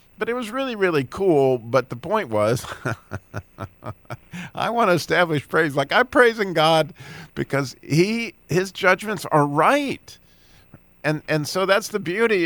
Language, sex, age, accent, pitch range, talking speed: English, male, 50-69, American, 120-180 Hz, 155 wpm